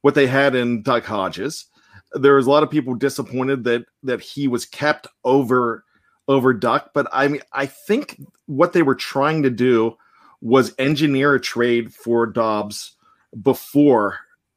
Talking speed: 160 wpm